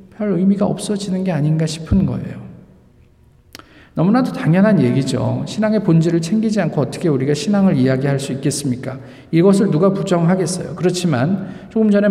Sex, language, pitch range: male, Korean, 140-200 Hz